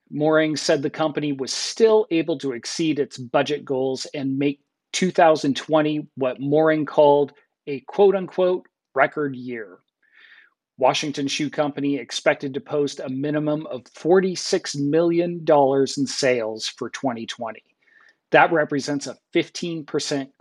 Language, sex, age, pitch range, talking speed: English, male, 40-59, 130-155 Hz, 120 wpm